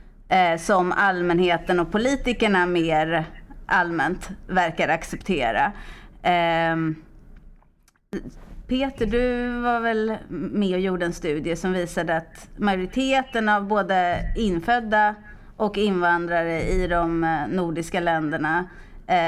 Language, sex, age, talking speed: Swedish, female, 30-49, 95 wpm